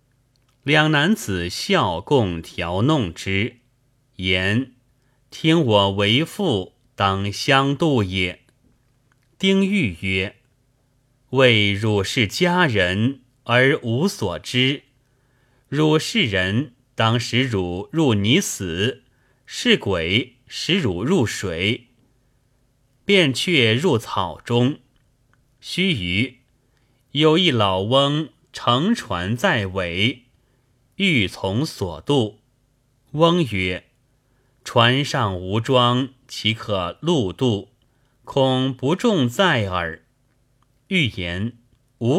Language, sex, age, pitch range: Chinese, male, 30-49, 110-135 Hz